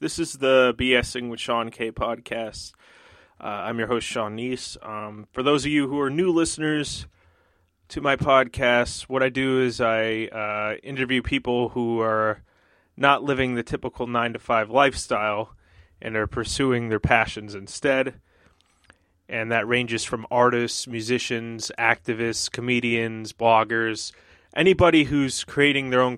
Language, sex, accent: English, male, American